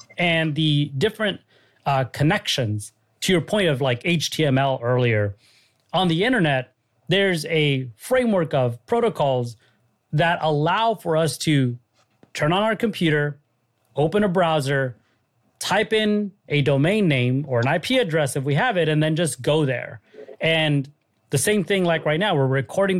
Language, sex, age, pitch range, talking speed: English, male, 30-49, 130-175 Hz, 155 wpm